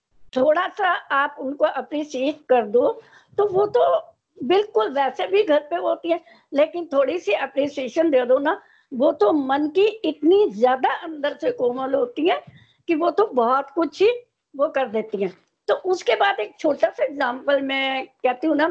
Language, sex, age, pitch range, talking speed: Hindi, female, 60-79, 255-330 Hz, 120 wpm